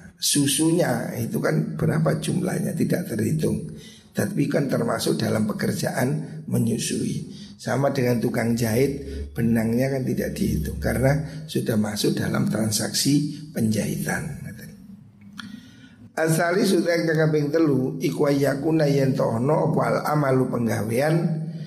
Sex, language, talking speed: male, Indonesian, 105 wpm